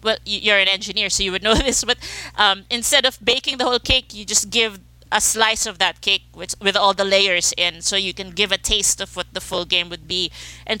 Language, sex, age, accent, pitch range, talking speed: English, female, 20-39, Filipino, 175-215 Hz, 250 wpm